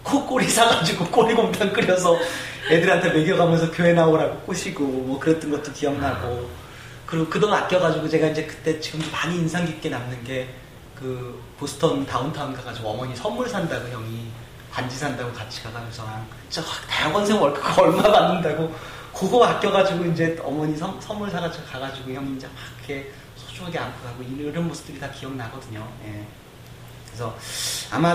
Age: 30-49